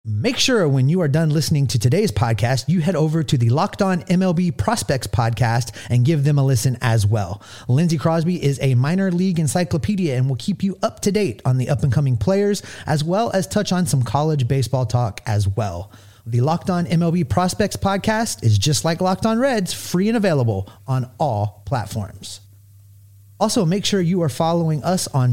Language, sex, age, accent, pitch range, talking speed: English, male, 30-49, American, 115-170 Hz, 200 wpm